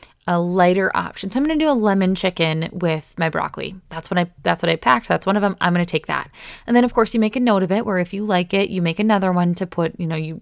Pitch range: 175-225 Hz